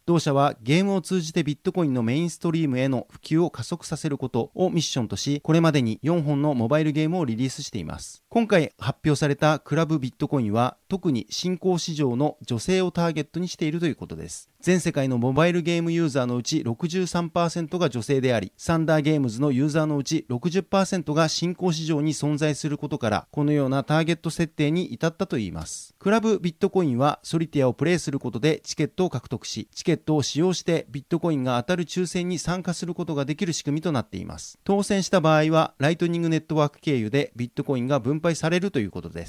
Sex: male